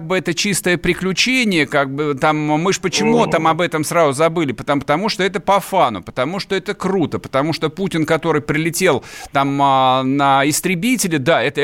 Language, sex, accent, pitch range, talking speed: Russian, male, native, 145-195 Hz, 180 wpm